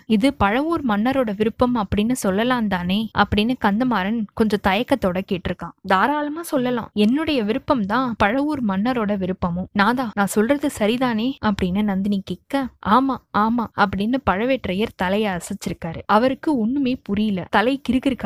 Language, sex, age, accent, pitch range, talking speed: Tamil, female, 20-39, native, 200-260 Hz, 110 wpm